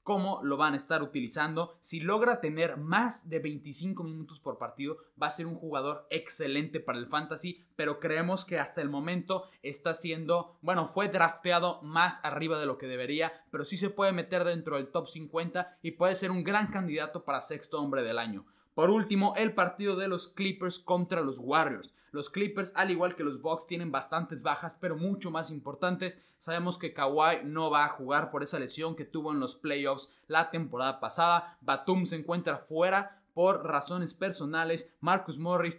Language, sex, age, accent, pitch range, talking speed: Spanish, male, 20-39, Mexican, 150-180 Hz, 190 wpm